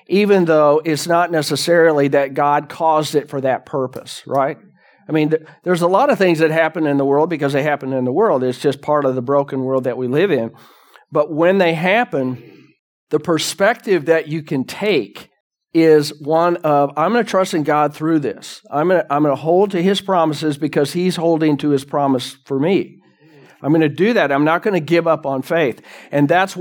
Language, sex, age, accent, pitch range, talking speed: English, male, 50-69, American, 135-160 Hz, 215 wpm